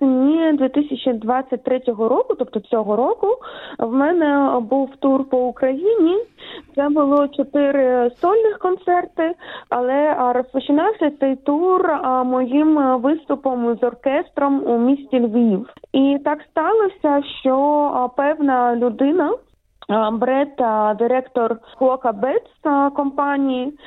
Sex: female